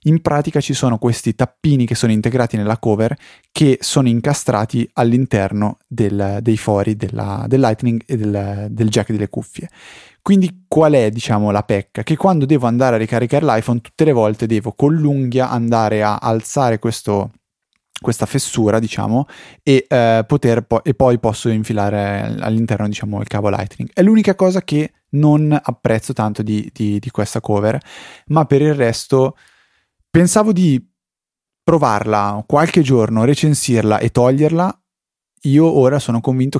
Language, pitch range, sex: Italian, 110-140 Hz, male